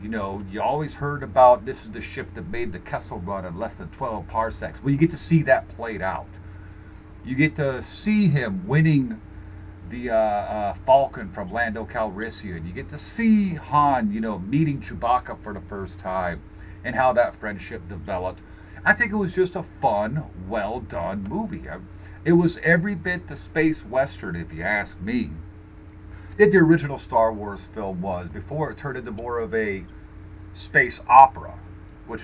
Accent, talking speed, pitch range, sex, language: American, 180 wpm, 95-135 Hz, male, English